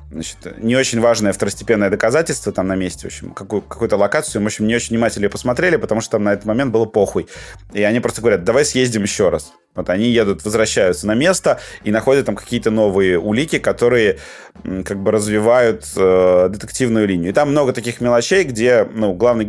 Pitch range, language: 95-115 Hz, Russian